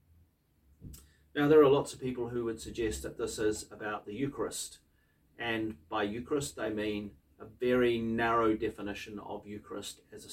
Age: 40-59